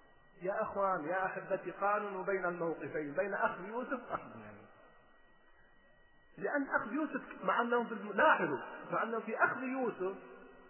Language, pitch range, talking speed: Arabic, 215-325 Hz, 130 wpm